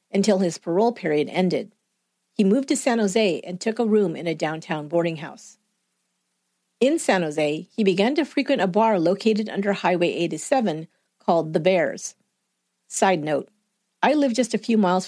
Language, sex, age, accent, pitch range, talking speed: English, female, 50-69, American, 165-225 Hz, 170 wpm